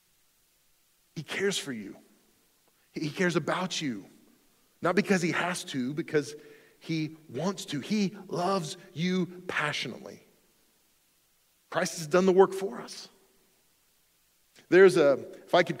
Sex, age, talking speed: male, 40-59, 125 wpm